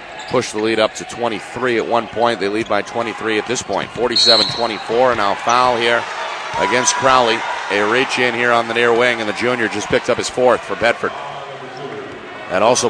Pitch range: 110-125 Hz